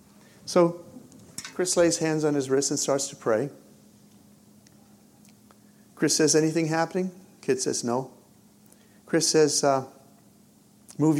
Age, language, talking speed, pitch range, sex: 50-69, English, 120 wpm, 135-175 Hz, male